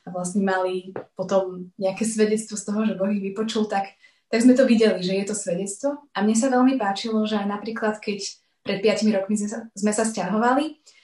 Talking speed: 205 wpm